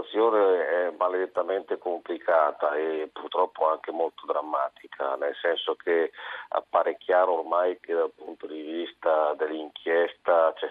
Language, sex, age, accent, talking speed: Italian, male, 40-59, native, 130 wpm